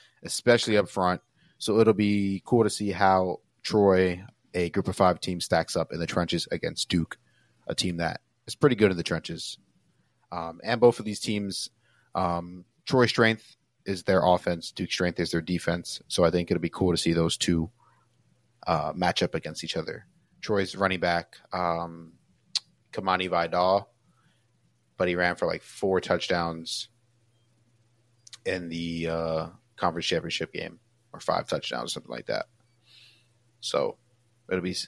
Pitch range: 85-115 Hz